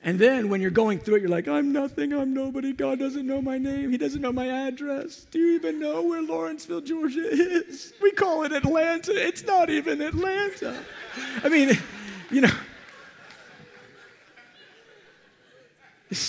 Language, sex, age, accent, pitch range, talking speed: English, male, 50-69, American, 155-255 Hz, 160 wpm